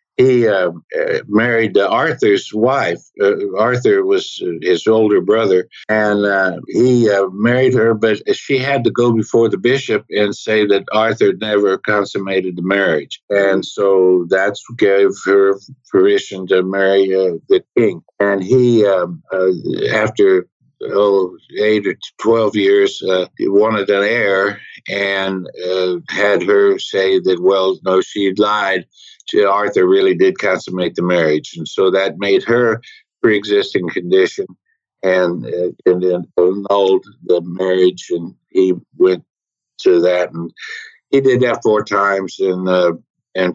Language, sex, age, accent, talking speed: English, male, 60-79, American, 145 wpm